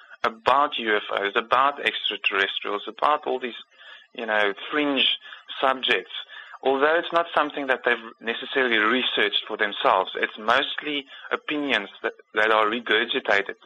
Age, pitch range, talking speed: 20-39, 105-130 Hz, 135 wpm